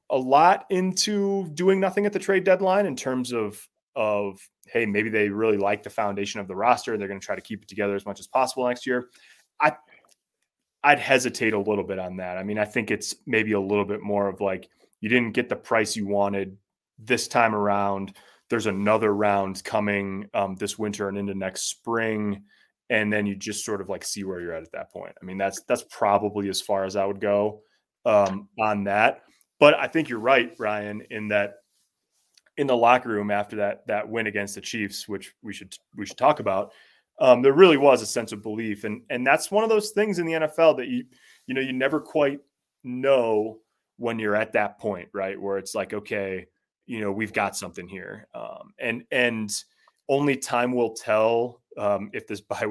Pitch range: 100-125 Hz